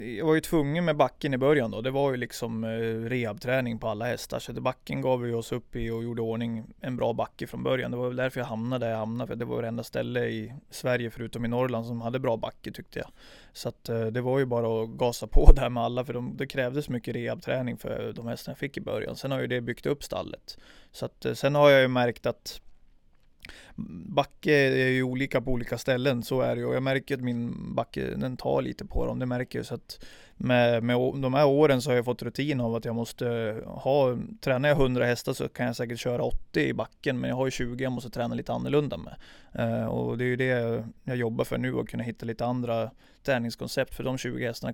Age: 20-39